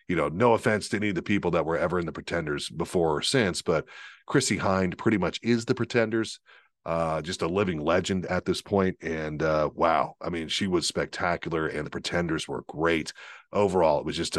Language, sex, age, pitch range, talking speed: English, male, 40-59, 80-110 Hz, 215 wpm